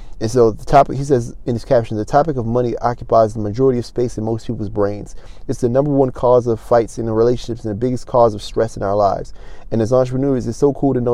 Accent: American